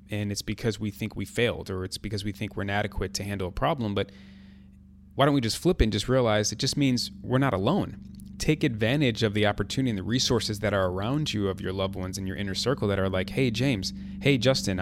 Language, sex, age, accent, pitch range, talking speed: English, male, 30-49, American, 95-115 Hz, 245 wpm